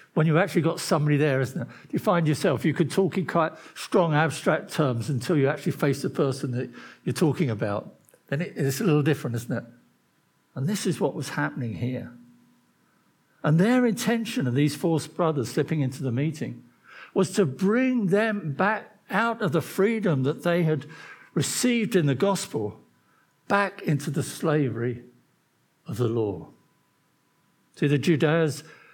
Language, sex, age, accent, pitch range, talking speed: English, male, 60-79, British, 135-175 Hz, 165 wpm